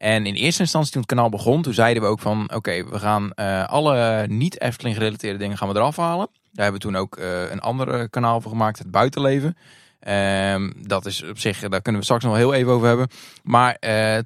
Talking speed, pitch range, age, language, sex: 235 wpm, 110-150 Hz, 20-39, Dutch, male